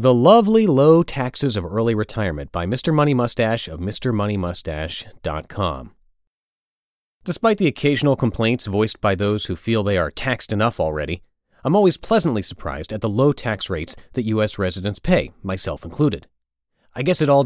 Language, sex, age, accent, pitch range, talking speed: English, male, 30-49, American, 95-135 Hz, 160 wpm